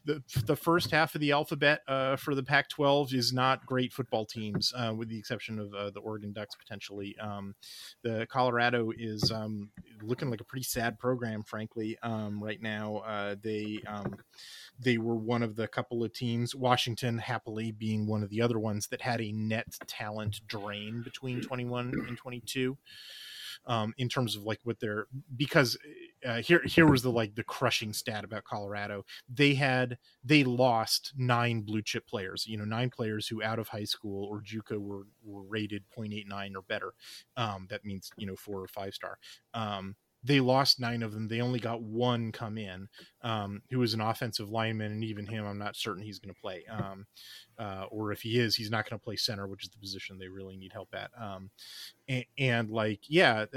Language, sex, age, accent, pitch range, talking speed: English, male, 30-49, American, 105-125 Hz, 200 wpm